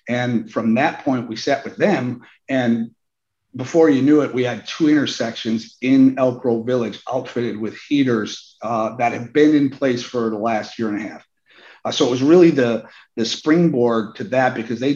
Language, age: English, 50-69